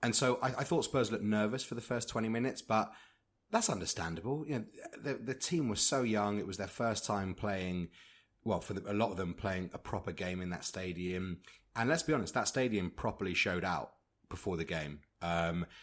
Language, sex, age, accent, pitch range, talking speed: English, male, 30-49, British, 85-105 Hz, 215 wpm